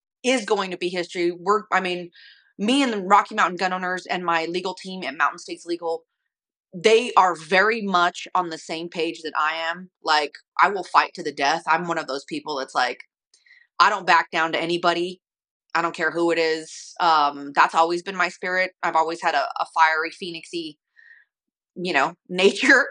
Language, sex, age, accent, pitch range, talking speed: English, female, 30-49, American, 165-200 Hz, 200 wpm